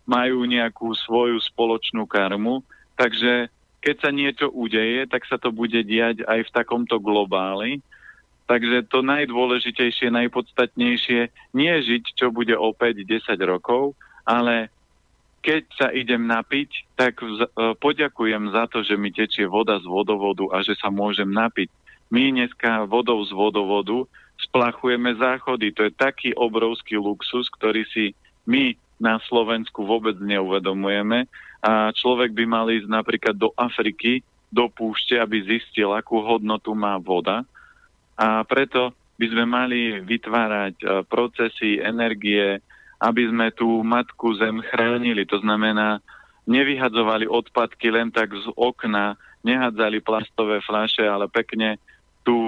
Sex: male